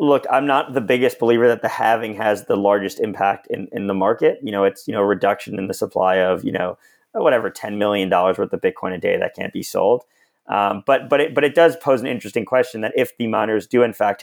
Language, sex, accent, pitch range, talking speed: English, male, American, 105-145 Hz, 255 wpm